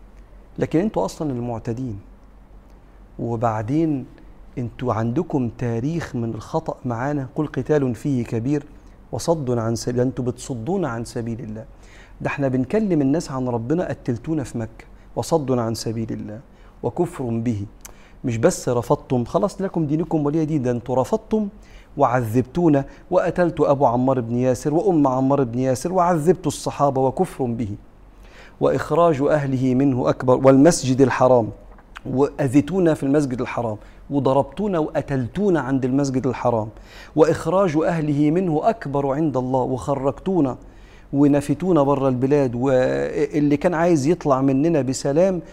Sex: male